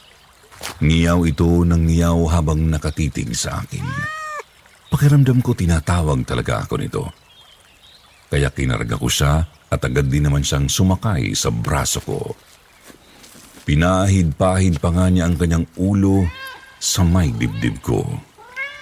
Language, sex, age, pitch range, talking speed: Filipino, male, 50-69, 80-100 Hz, 120 wpm